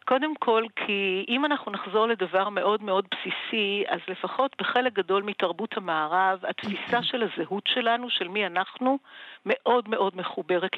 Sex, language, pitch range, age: female, Hebrew, 190-260 Hz, 50-69